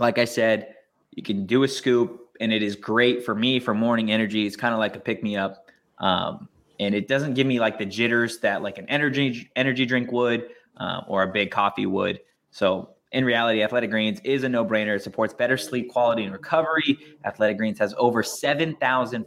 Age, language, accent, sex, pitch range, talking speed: 20-39, English, American, male, 105-130 Hz, 210 wpm